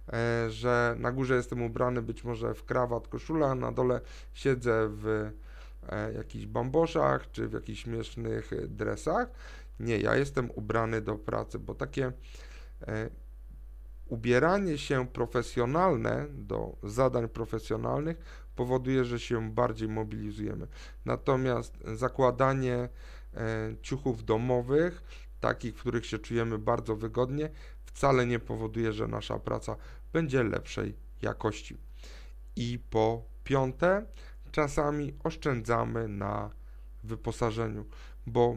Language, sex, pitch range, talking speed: Polish, male, 110-145 Hz, 105 wpm